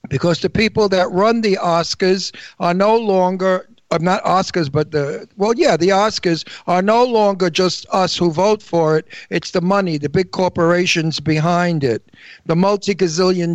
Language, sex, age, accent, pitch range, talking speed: English, male, 60-79, American, 160-200 Hz, 170 wpm